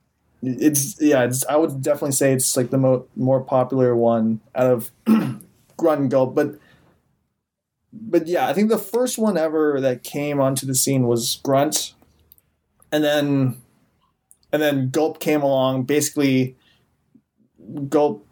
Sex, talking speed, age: male, 145 wpm, 20-39